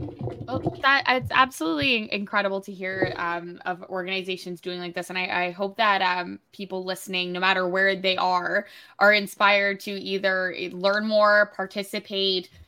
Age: 10-29